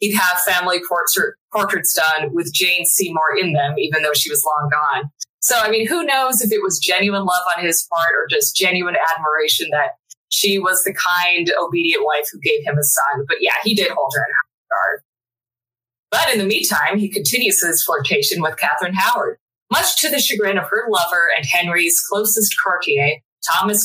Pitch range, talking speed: 150-210 Hz, 190 wpm